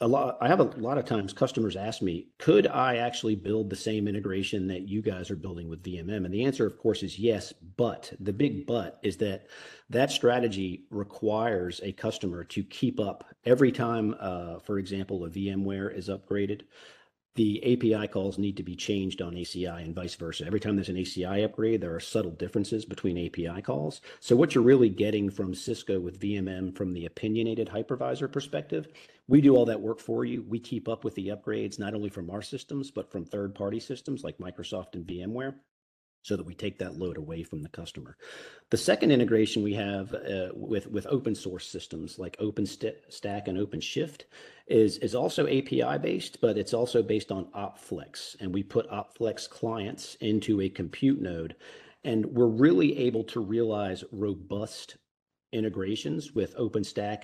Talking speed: 185 wpm